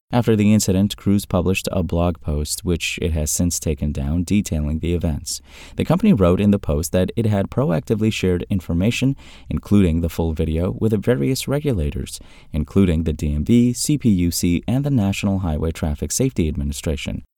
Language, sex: English, male